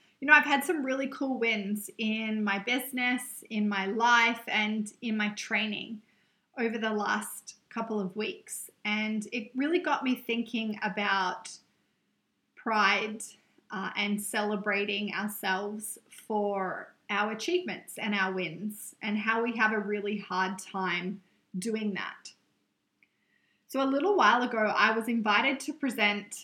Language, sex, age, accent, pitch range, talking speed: English, female, 20-39, Australian, 200-230 Hz, 140 wpm